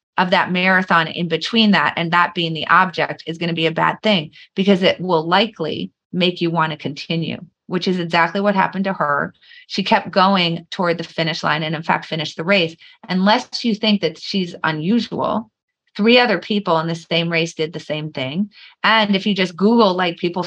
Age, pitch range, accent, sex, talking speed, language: 30-49, 165-200 Hz, American, female, 200 wpm, English